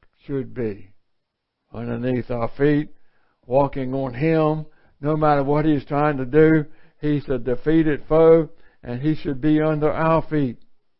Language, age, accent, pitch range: English, 60-79, American, 130-175 Hz